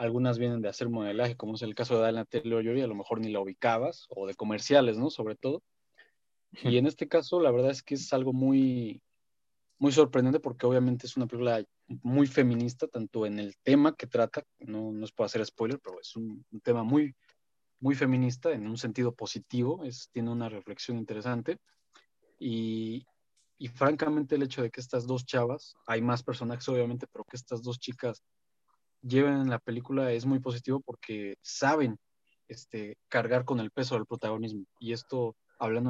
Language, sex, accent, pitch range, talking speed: Spanish, male, Mexican, 110-130 Hz, 185 wpm